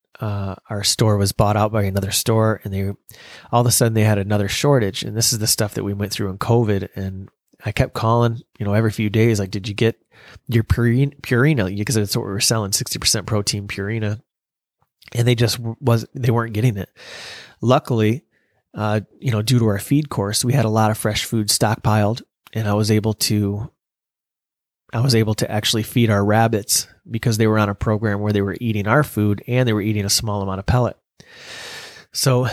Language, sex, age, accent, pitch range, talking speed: English, male, 30-49, American, 105-120 Hz, 210 wpm